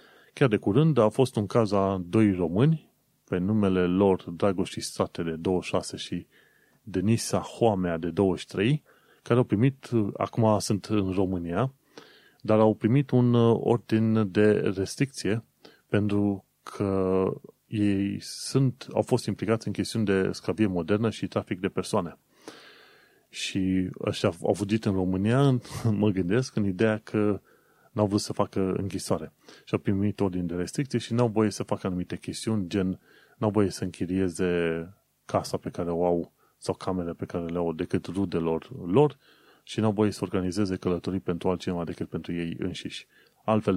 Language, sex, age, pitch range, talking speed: Romanian, male, 30-49, 90-110 Hz, 160 wpm